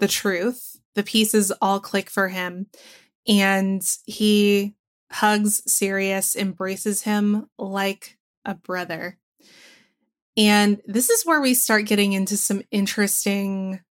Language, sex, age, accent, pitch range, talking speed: English, female, 20-39, American, 195-225 Hz, 115 wpm